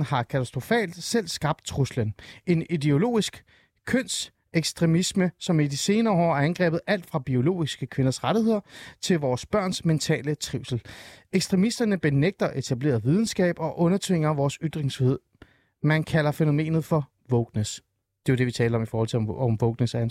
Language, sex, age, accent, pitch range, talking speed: Danish, male, 30-49, native, 130-185 Hz, 160 wpm